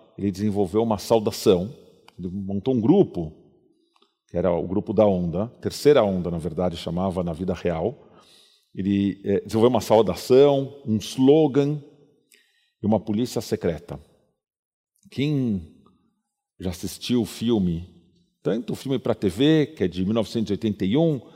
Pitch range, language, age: 100-135 Hz, Portuguese, 40-59